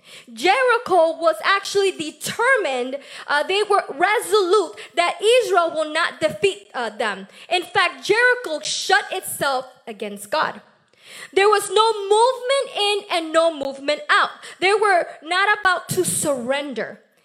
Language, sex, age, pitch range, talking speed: English, female, 20-39, 300-415 Hz, 130 wpm